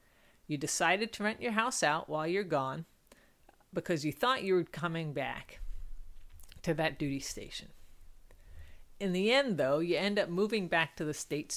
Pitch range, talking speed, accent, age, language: 150-195 Hz, 170 wpm, American, 40-59, English